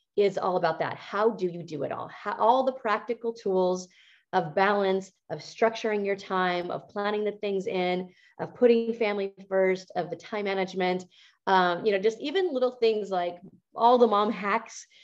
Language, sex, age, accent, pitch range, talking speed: English, female, 30-49, American, 190-230 Hz, 185 wpm